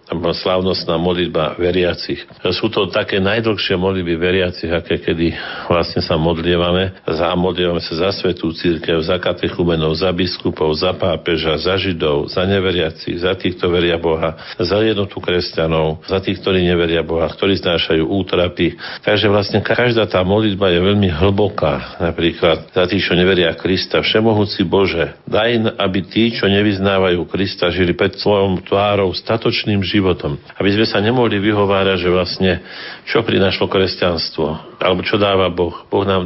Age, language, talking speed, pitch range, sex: 50-69, Slovak, 140 wpm, 85-100 Hz, male